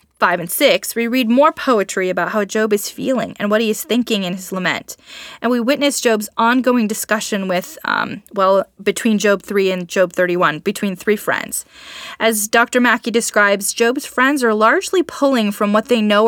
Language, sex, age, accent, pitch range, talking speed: English, female, 20-39, American, 195-240 Hz, 190 wpm